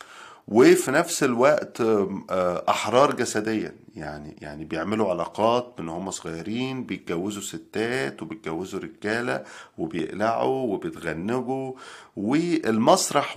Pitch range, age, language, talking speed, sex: 95-125 Hz, 40-59, Arabic, 85 wpm, male